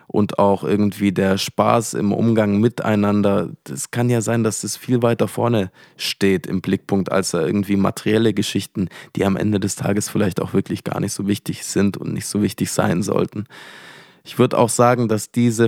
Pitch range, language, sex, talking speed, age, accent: 100-115 Hz, German, male, 190 wpm, 20-39, German